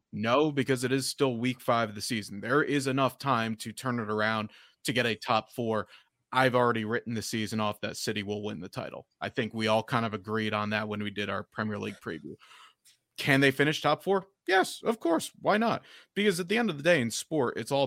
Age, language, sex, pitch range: 30-49, English, male, 110-145 Hz